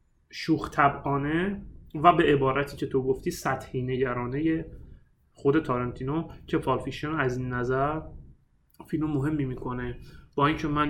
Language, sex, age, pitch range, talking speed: Persian, male, 30-49, 135-165 Hz, 130 wpm